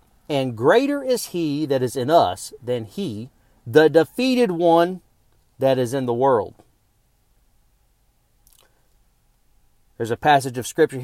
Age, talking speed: 40-59, 125 wpm